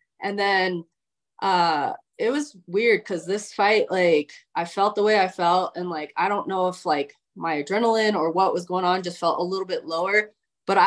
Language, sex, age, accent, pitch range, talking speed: English, female, 20-39, American, 175-220 Hz, 205 wpm